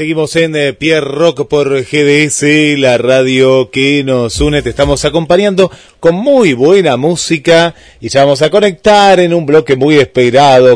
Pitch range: 130-160 Hz